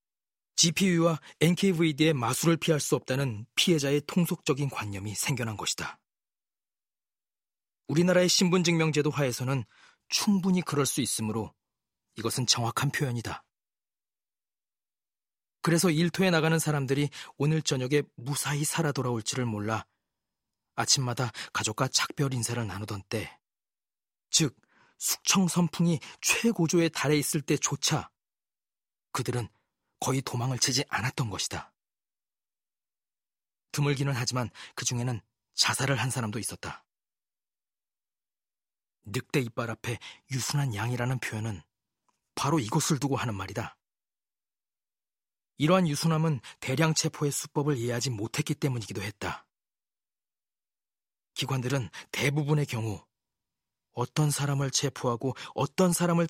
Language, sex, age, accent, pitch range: Korean, male, 40-59, native, 120-155 Hz